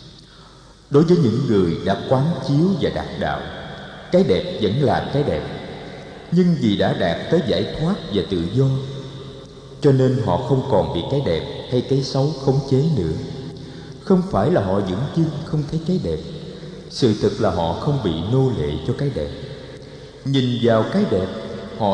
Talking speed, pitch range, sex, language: 180 wpm, 130-165 Hz, male, Vietnamese